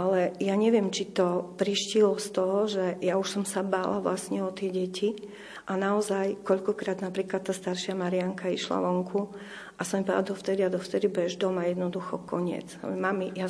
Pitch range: 185-205 Hz